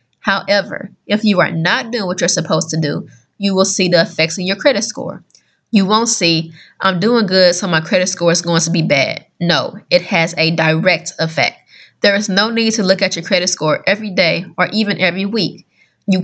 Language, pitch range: English, 175-220 Hz